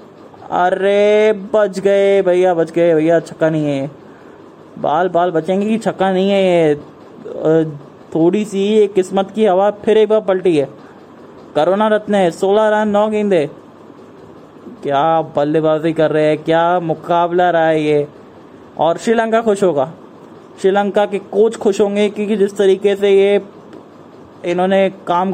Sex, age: male, 20-39